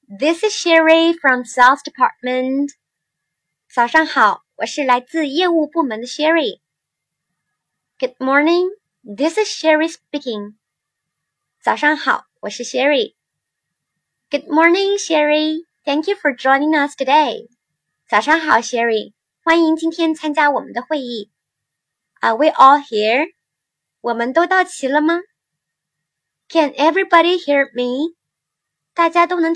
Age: 20-39